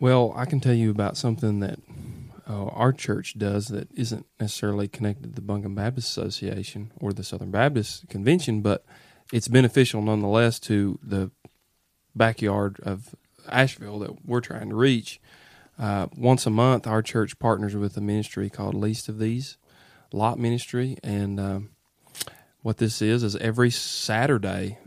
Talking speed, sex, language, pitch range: 155 wpm, male, English, 105-125 Hz